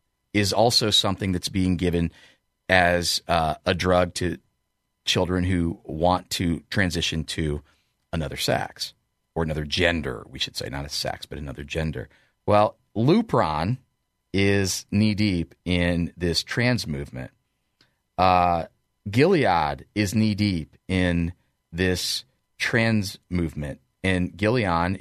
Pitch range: 80-105 Hz